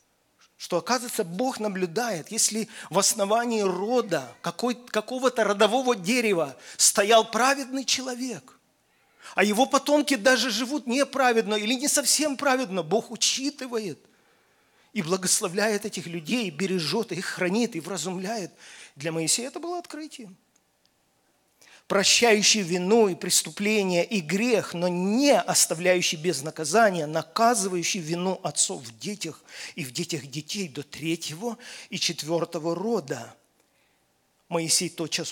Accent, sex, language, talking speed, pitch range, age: native, male, Russian, 115 wpm, 165-225 Hz, 40-59